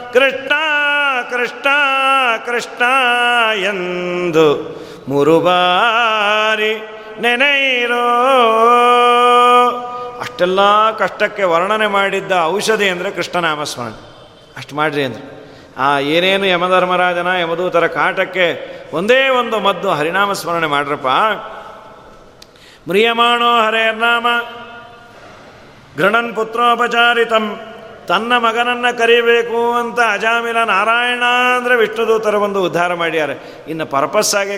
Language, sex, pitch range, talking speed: Kannada, male, 180-235 Hz, 80 wpm